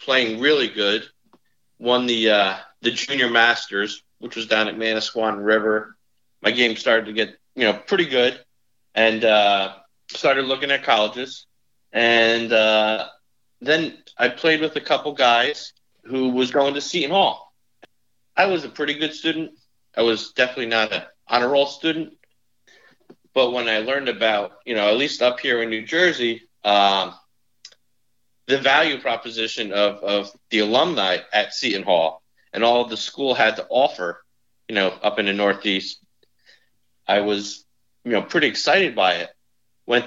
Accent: American